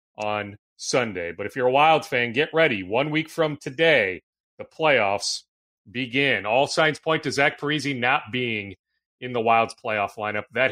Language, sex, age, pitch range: English, male, 30-49, 125-170 Hz